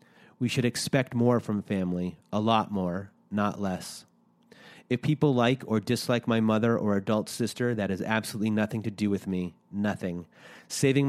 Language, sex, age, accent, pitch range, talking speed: English, male, 30-49, American, 100-120 Hz, 170 wpm